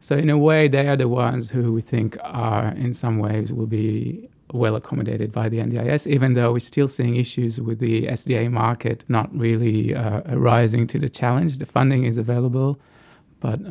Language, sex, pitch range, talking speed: English, male, 115-135 Hz, 195 wpm